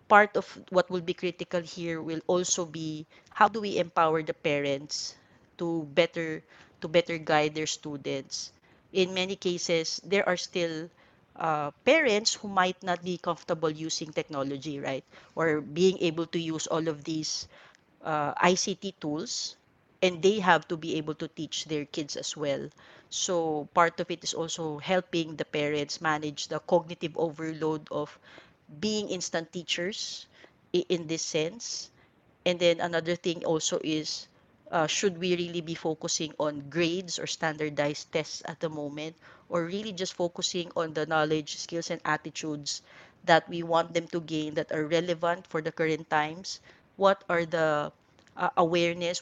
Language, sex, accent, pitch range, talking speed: English, female, Filipino, 155-180 Hz, 160 wpm